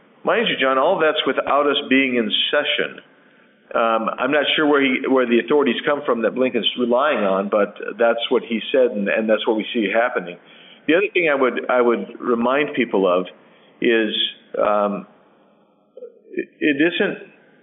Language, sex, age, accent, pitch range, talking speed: English, male, 50-69, American, 120-150 Hz, 175 wpm